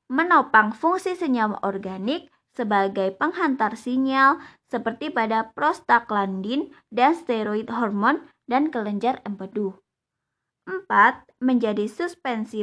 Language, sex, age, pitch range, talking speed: Indonesian, female, 20-39, 205-270 Hz, 90 wpm